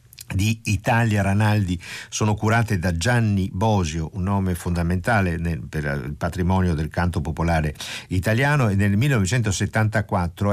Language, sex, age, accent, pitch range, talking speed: Italian, male, 50-69, native, 95-120 Hz, 120 wpm